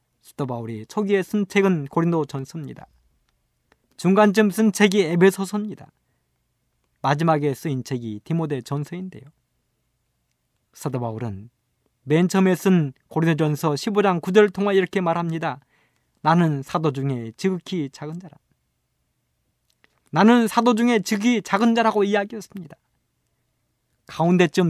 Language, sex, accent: Korean, male, native